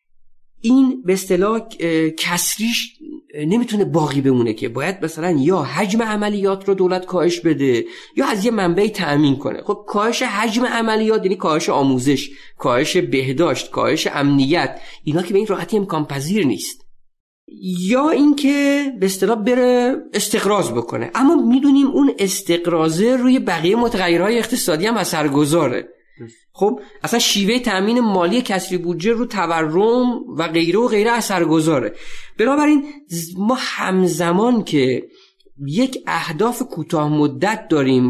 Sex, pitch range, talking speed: male, 165-245 Hz, 130 wpm